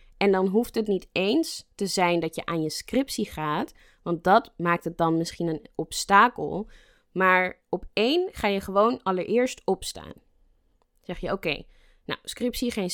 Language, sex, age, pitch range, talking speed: Dutch, female, 20-39, 165-210 Hz, 175 wpm